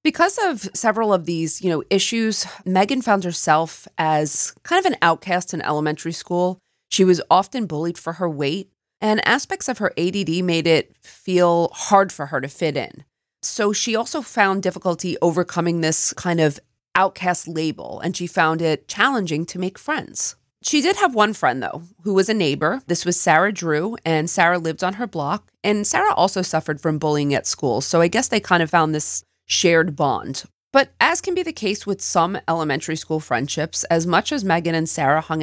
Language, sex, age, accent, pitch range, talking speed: English, female, 30-49, American, 160-210 Hz, 195 wpm